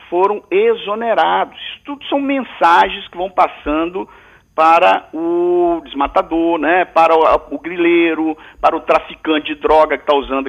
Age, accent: 50-69, Brazilian